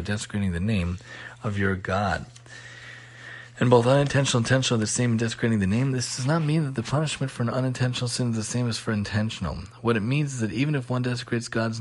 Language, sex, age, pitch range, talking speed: English, male, 30-49, 100-120 Hz, 230 wpm